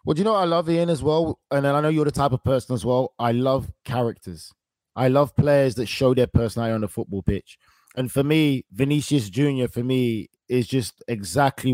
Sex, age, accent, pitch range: male, 20-39, British, 120-140 Hz